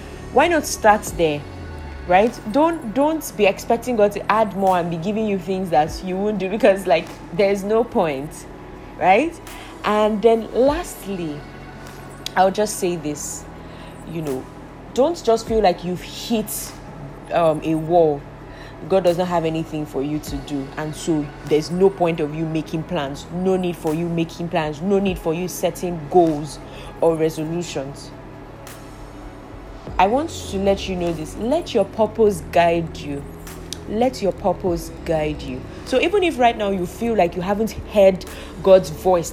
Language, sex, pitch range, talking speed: English, female, 150-195 Hz, 165 wpm